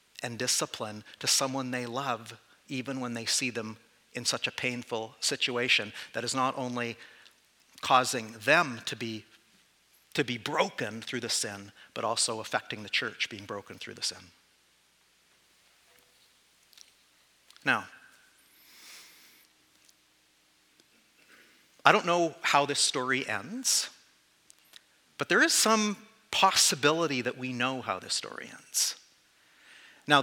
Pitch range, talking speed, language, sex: 125-185 Hz, 120 wpm, English, male